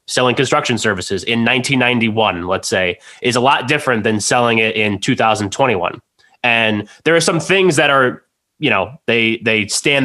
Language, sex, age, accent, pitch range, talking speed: English, male, 20-39, American, 110-130 Hz, 165 wpm